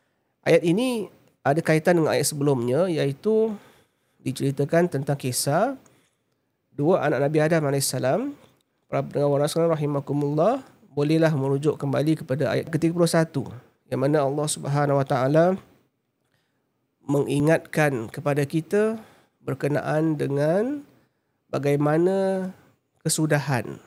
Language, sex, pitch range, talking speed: Malay, male, 135-165 Hz, 90 wpm